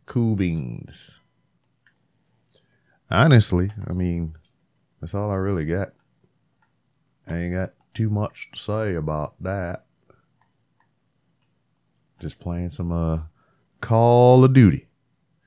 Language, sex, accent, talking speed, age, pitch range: English, male, American, 100 wpm, 30-49, 80-110 Hz